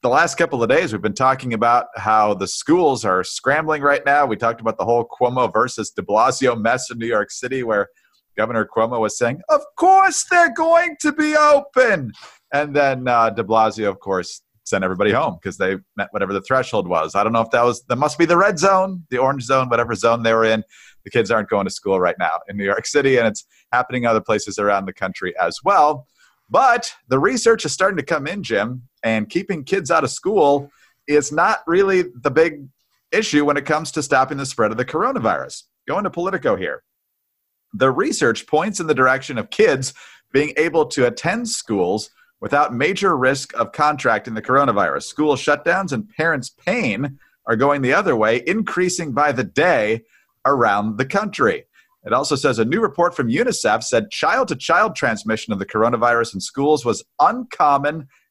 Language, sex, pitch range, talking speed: English, male, 115-170 Hz, 195 wpm